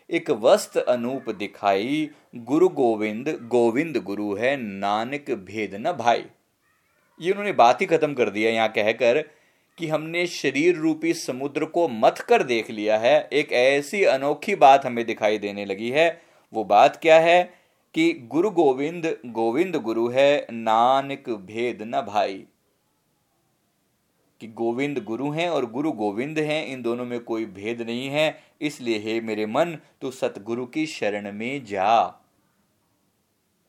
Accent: native